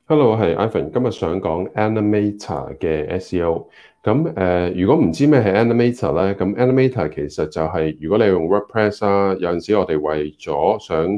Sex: male